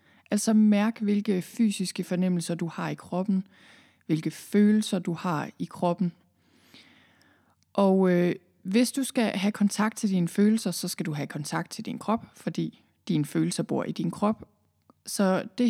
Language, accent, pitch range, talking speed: Danish, native, 170-210 Hz, 155 wpm